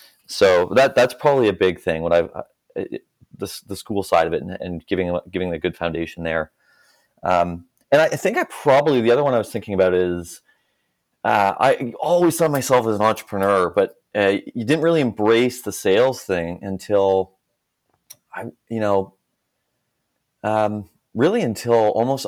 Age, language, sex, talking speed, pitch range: 30-49, English, male, 175 wpm, 85-110 Hz